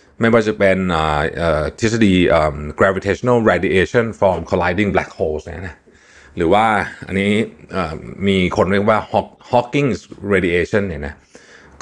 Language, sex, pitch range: Thai, male, 85-115 Hz